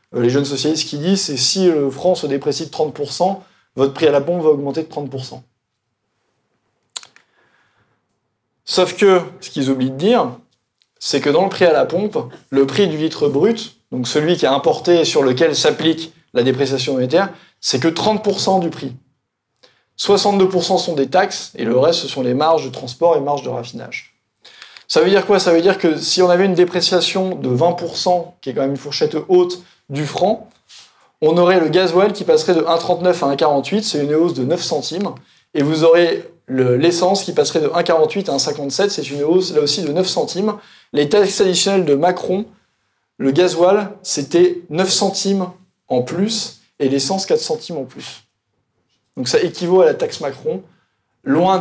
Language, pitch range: French, 140-190 Hz